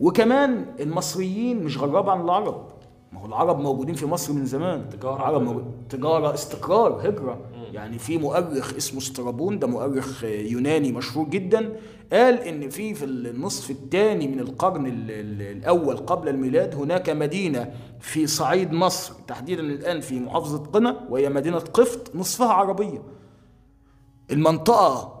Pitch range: 120-165 Hz